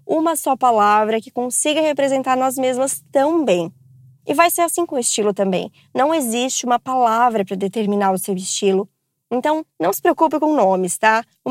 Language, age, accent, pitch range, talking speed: Portuguese, 20-39, Brazilian, 220-275 Hz, 180 wpm